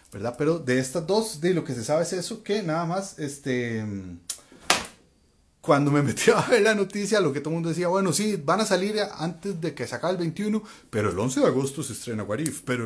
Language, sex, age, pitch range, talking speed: Spanish, male, 30-49, 110-165 Hz, 240 wpm